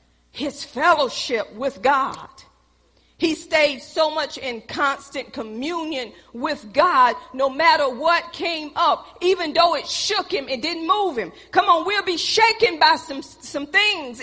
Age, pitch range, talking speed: 40-59, 270-395 Hz, 150 wpm